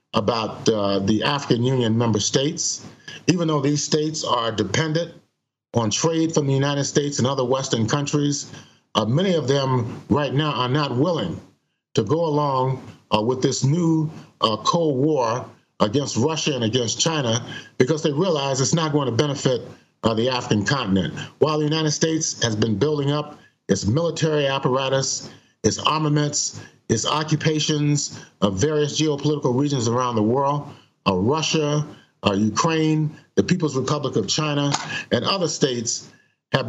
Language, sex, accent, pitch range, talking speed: English, male, American, 125-155 Hz, 155 wpm